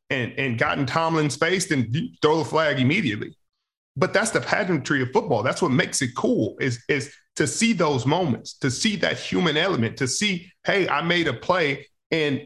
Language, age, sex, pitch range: English, 40-59, male, 135-170 Hz